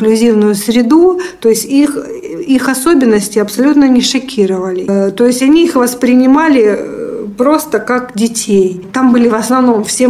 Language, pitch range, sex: Russian, 200-235 Hz, female